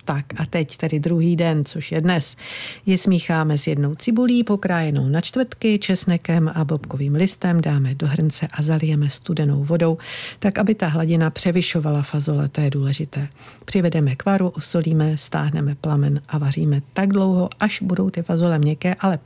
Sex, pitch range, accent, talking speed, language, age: female, 145-180 Hz, native, 160 wpm, Czech, 50-69